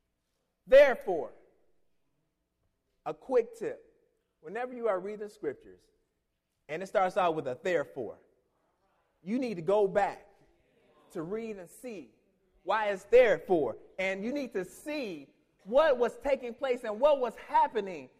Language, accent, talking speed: English, American, 135 wpm